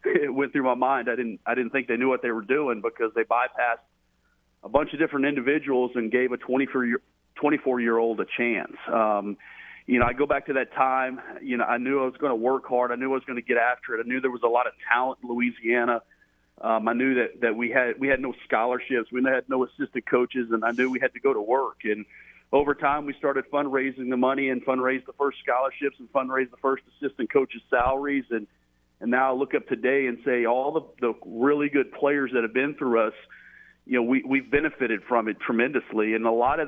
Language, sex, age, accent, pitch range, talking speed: English, male, 40-59, American, 120-140 Hz, 245 wpm